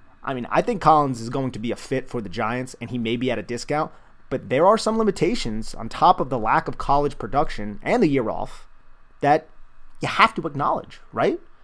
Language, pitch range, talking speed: English, 115-150 Hz, 225 wpm